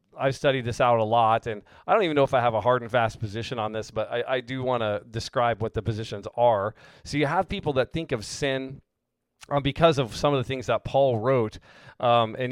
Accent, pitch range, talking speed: American, 115-140 Hz, 245 wpm